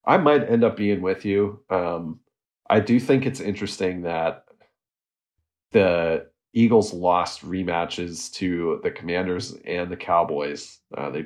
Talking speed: 140 wpm